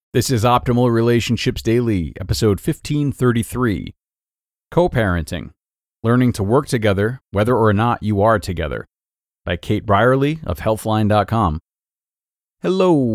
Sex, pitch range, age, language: male, 95-125 Hz, 40-59, English